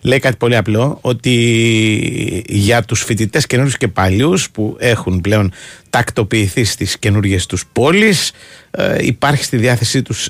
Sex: male